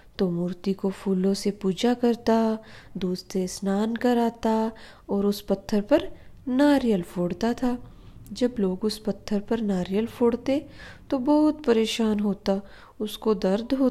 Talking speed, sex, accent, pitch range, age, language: 130 wpm, female, native, 200-260 Hz, 20-39, Hindi